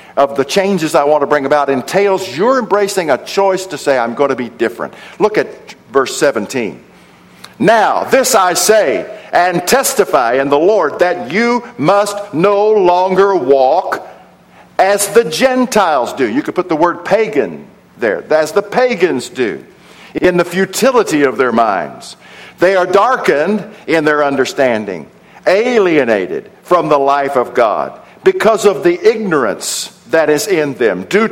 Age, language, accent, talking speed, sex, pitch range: 50-69, English, American, 155 wpm, male, 160-230 Hz